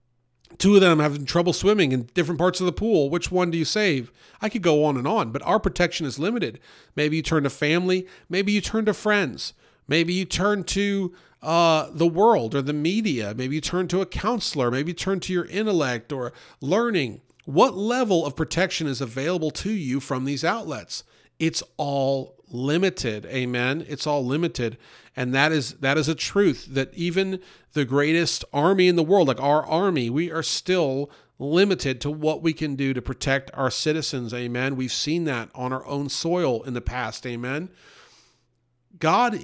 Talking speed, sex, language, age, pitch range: 185 wpm, male, English, 40-59, 135-180 Hz